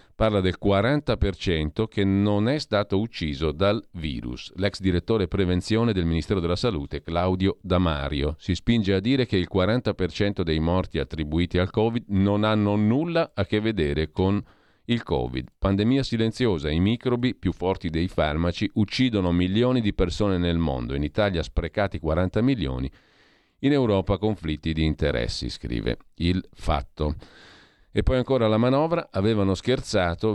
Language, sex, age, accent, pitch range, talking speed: Italian, male, 40-59, native, 85-110 Hz, 145 wpm